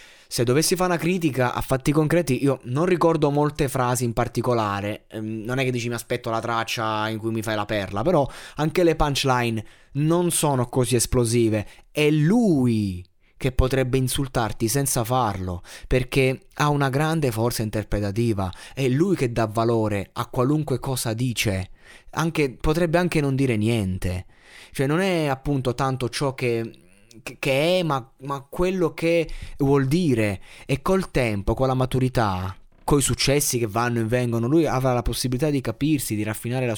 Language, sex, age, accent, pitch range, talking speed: Italian, male, 20-39, native, 110-140 Hz, 165 wpm